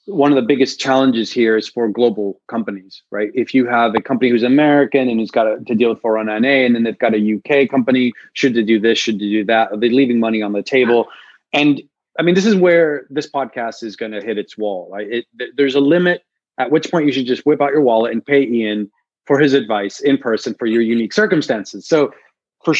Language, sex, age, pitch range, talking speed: English, male, 30-49, 110-140 Hz, 240 wpm